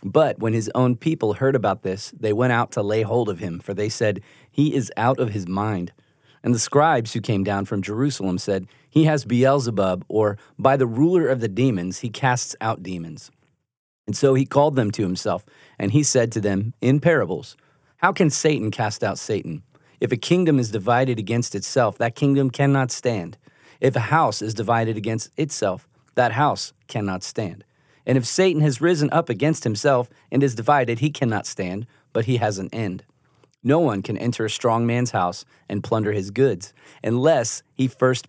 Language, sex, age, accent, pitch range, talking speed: English, male, 30-49, American, 100-135 Hz, 195 wpm